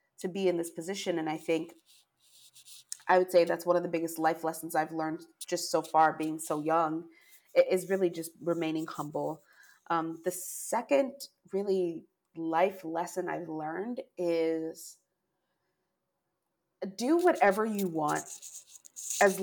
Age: 30-49